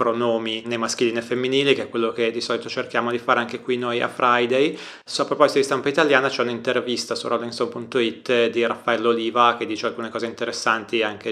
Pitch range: 115-125 Hz